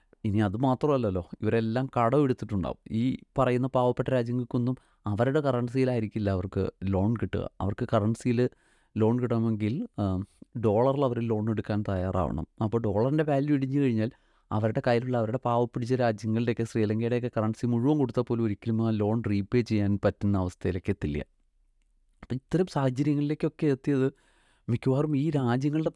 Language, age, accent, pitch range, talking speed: Malayalam, 30-49, native, 105-130 Hz, 115 wpm